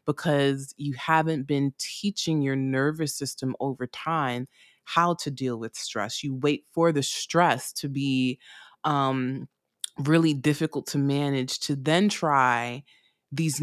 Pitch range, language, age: 135-165 Hz, English, 20-39